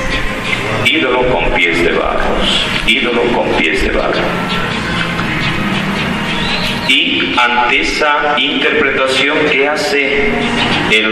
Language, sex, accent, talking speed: Spanish, male, Mexican, 90 wpm